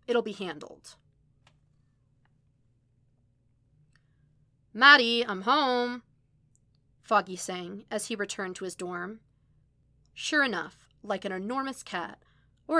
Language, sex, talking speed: English, female, 100 wpm